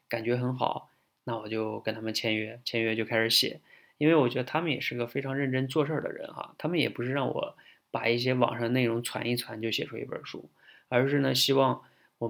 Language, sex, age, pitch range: Chinese, male, 20-39, 115-135 Hz